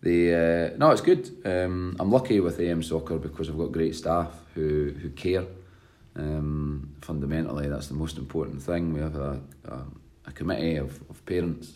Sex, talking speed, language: male, 180 wpm, English